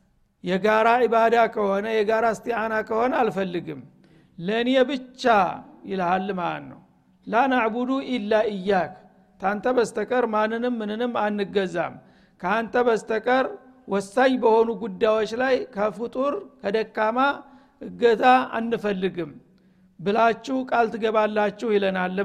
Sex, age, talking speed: male, 60-79, 90 wpm